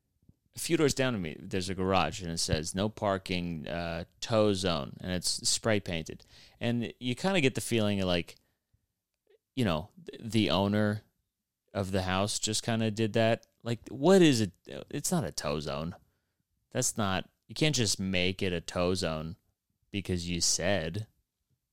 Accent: American